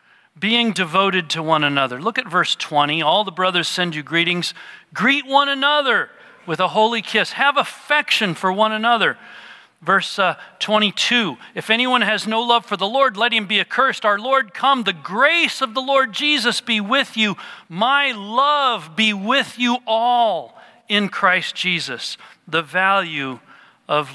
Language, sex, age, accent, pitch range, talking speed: English, male, 40-59, American, 155-225 Hz, 165 wpm